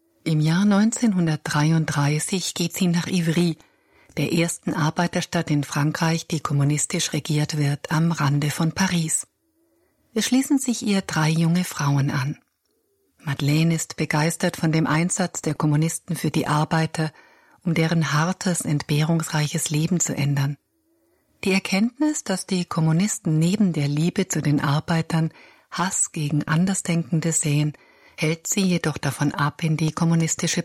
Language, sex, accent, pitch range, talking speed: German, female, German, 150-185 Hz, 135 wpm